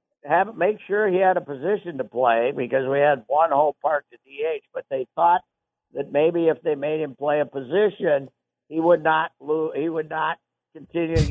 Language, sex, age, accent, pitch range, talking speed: English, male, 60-79, American, 125-165 Hz, 200 wpm